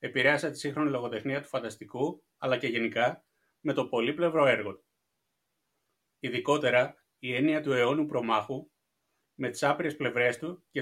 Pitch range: 125-160 Hz